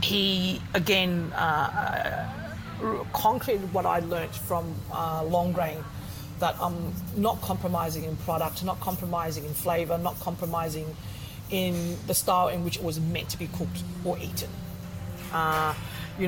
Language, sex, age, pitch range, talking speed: English, female, 30-49, 135-175 Hz, 135 wpm